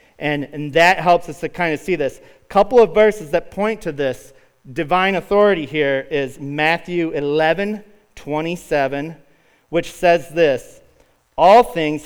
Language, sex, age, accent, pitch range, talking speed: English, male, 40-59, American, 120-160 Hz, 150 wpm